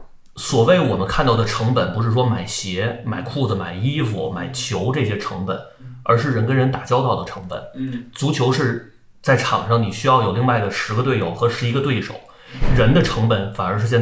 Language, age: Chinese, 30-49